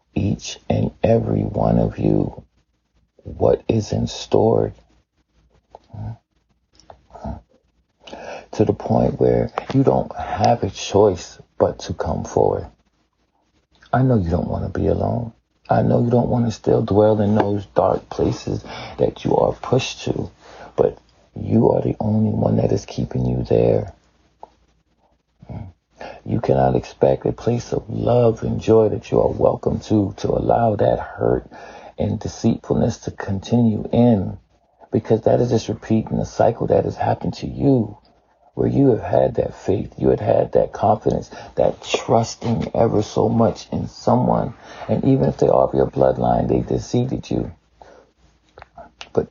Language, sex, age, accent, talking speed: English, male, 40-59, American, 150 wpm